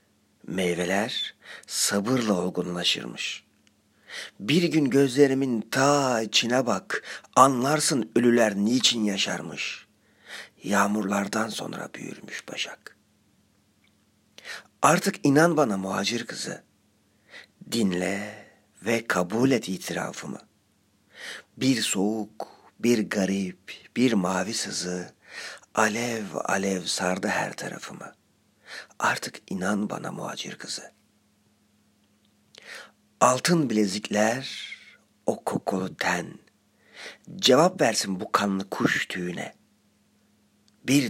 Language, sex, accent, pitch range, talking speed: Turkish, male, native, 100-115 Hz, 80 wpm